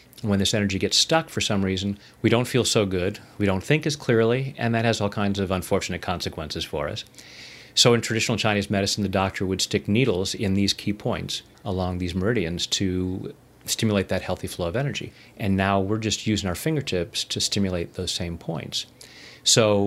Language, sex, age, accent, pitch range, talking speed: English, male, 30-49, American, 95-115 Hz, 195 wpm